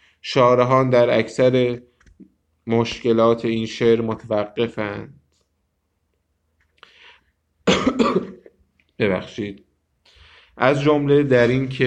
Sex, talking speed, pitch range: male, 60 wpm, 105-120 Hz